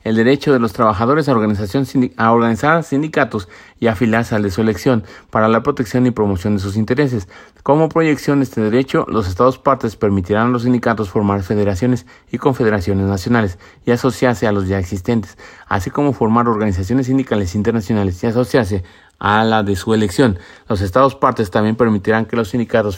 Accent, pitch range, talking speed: Mexican, 105-130 Hz, 175 wpm